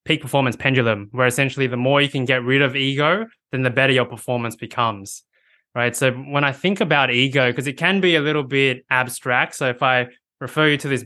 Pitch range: 125-150 Hz